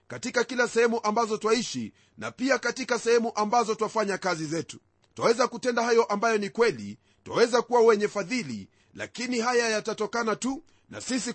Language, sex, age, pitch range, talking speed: Swahili, male, 40-59, 195-235 Hz, 155 wpm